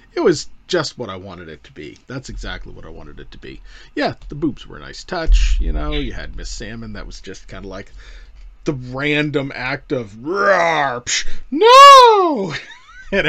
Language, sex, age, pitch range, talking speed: English, male, 40-59, 95-155 Hz, 195 wpm